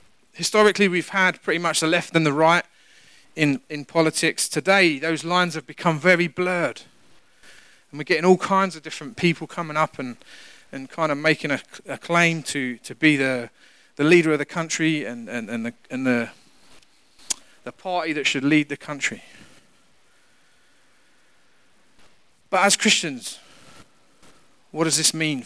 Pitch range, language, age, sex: 145-180 Hz, English, 30-49, male